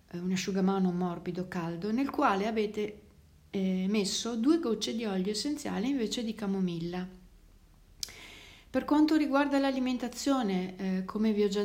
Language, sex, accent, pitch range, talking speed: Italian, female, native, 185-225 Hz, 125 wpm